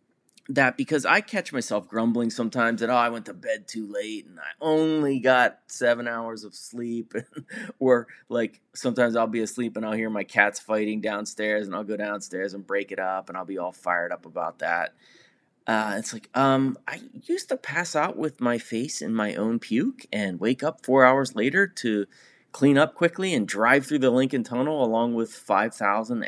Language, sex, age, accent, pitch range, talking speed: English, male, 30-49, American, 110-150 Hz, 200 wpm